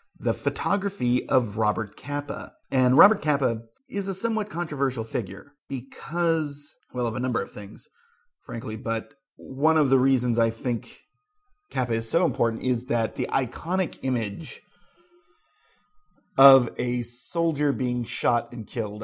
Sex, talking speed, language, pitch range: male, 140 wpm, English, 115-155 Hz